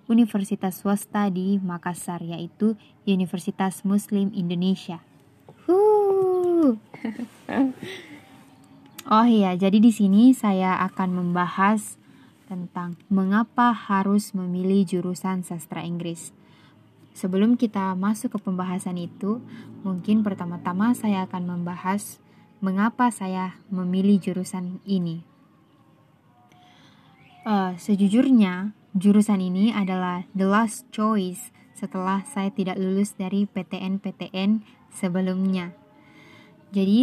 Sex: female